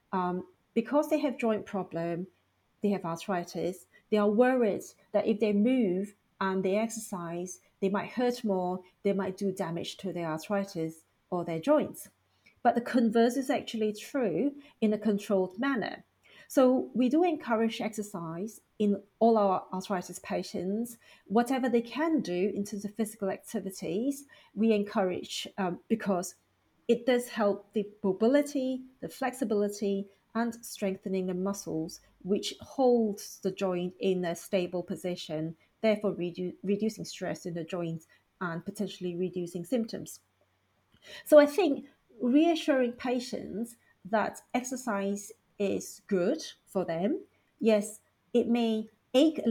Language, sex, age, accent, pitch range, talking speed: English, female, 40-59, British, 185-235 Hz, 135 wpm